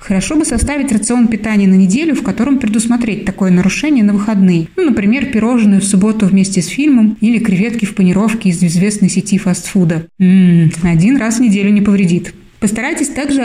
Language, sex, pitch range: Russian, female, 190-230 Hz